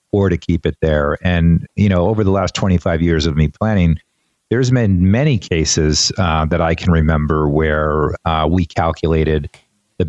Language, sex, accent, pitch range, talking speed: English, male, American, 80-100 Hz, 180 wpm